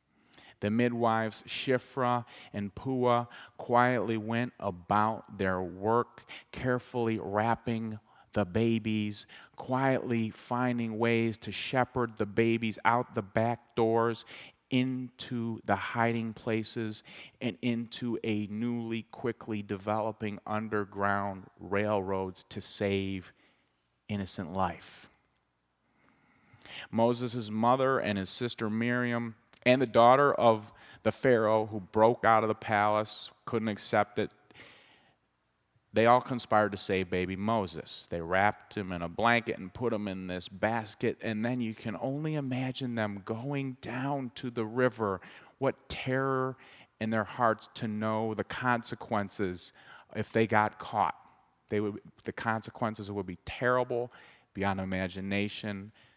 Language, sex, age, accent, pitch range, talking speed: English, male, 40-59, American, 100-120 Hz, 125 wpm